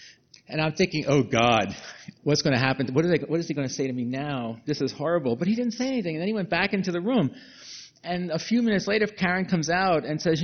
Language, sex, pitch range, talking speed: English, male, 120-160 Hz, 260 wpm